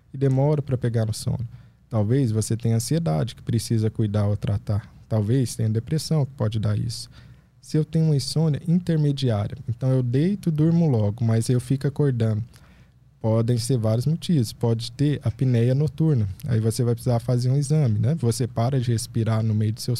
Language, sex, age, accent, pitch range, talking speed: Portuguese, male, 20-39, Brazilian, 115-140 Hz, 185 wpm